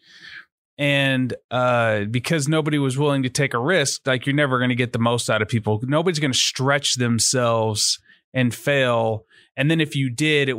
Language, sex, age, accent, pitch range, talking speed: English, male, 30-49, American, 115-145 Hz, 195 wpm